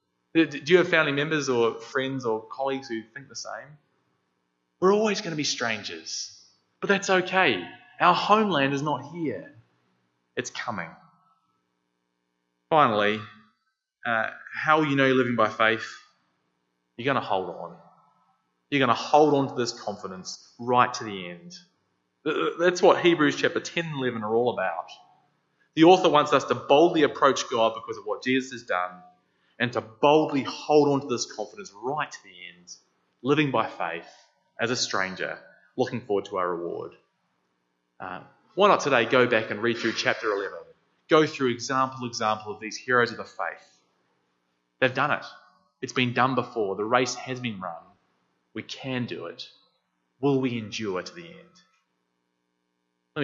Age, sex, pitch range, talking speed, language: 20-39, male, 85-145 Hz, 165 wpm, English